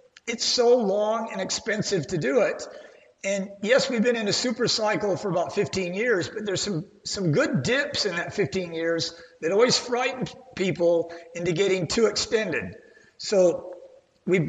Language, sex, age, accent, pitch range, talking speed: English, male, 50-69, American, 170-225 Hz, 165 wpm